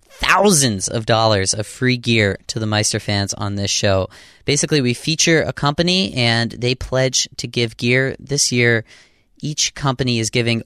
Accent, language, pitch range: American, English, 110-135 Hz